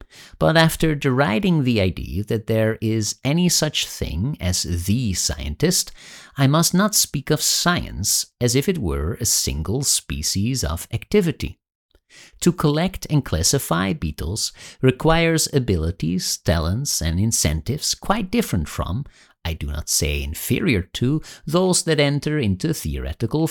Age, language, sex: 50-69, English, male